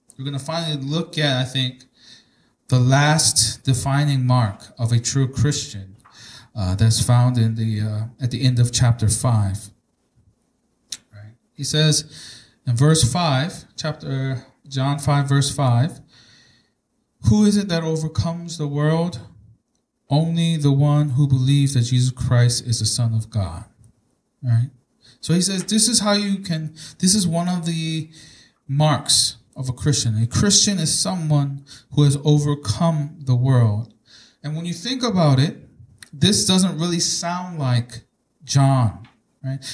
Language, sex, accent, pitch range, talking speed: English, male, American, 120-160 Hz, 150 wpm